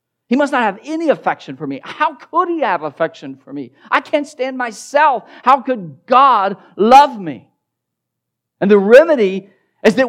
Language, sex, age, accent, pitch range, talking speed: English, male, 50-69, American, 170-230 Hz, 170 wpm